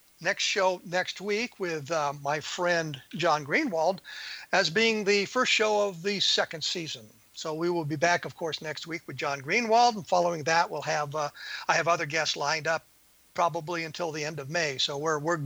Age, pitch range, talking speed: 50-69, 165-205 Hz, 200 wpm